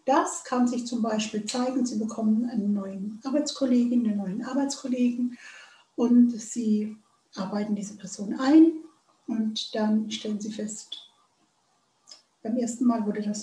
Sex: female